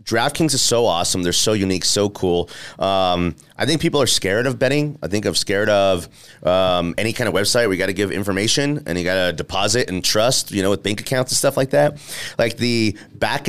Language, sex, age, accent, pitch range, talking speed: English, male, 30-49, American, 95-120 Hz, 230 wpm